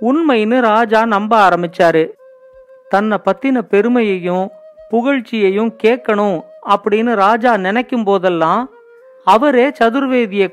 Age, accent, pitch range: 40-59, native, 200-260 Hz